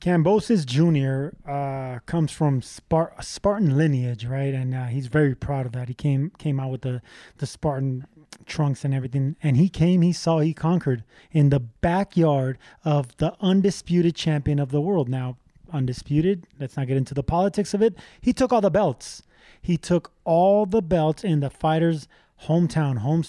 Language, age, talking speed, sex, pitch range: English, 20-39, 175 wpm, male, 135-175 Hz